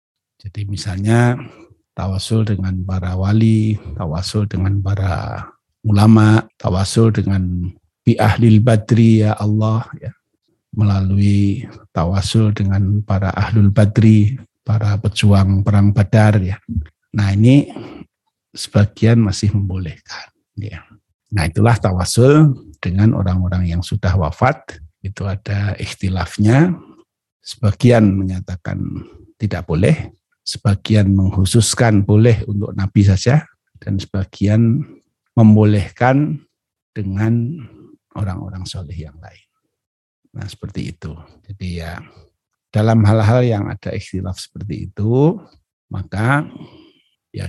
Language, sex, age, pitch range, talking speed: Indonesian, male, 60-79, 95-110 Hz, 95 wpm